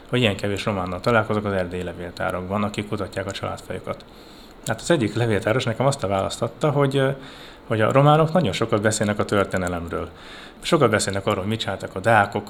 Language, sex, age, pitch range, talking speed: Hungarian, male, 30-49, 95-120 Hz, 175 wpm